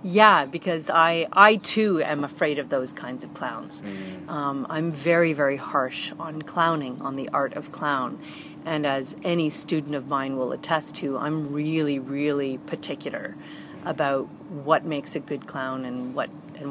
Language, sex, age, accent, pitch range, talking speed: English, female, 40-59, American, 150-175 Hz, 165 wpm